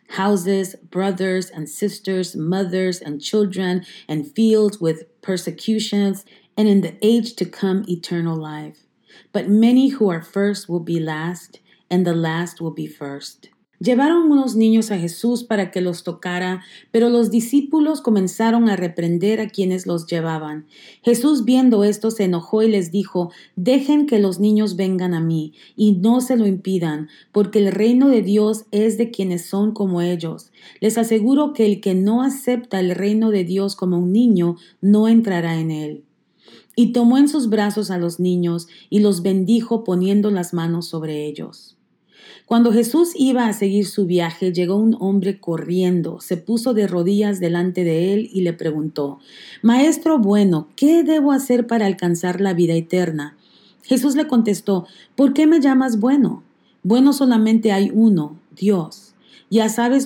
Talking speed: 165 wpm